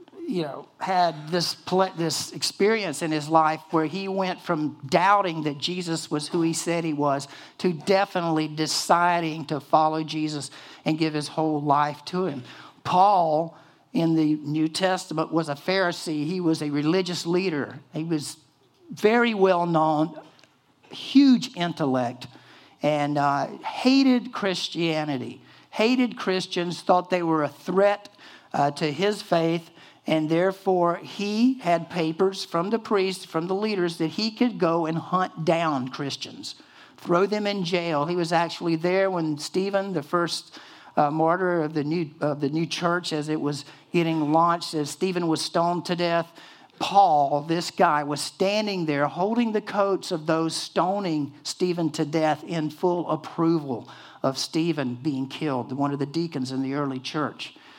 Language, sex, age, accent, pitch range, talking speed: English, male, 60-79, American, 155-185 Hz, 155 wpm